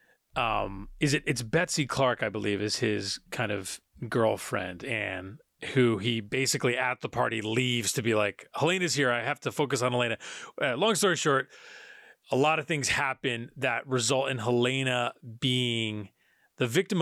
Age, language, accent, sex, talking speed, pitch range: 30-49, English, American, male, 165 wpm, 120-150 Hz